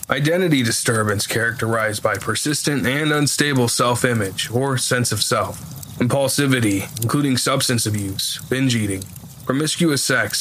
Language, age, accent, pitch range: English, 20-39, American, 115-140 Hz